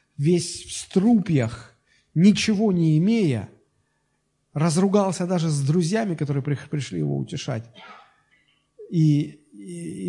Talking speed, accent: 95 wpm, native